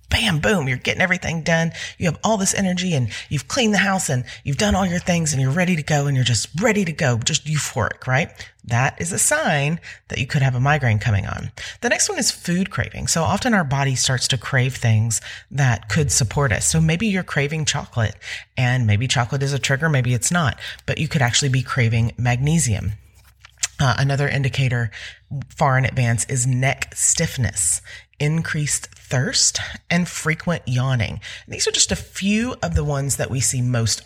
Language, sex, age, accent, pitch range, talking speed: English, female, 30-49, American, 115-155 Hz, 200 wpm